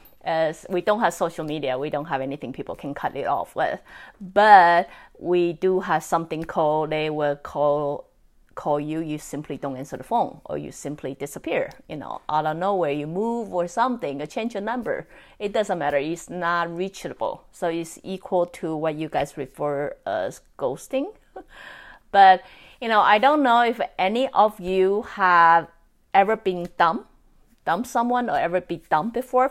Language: English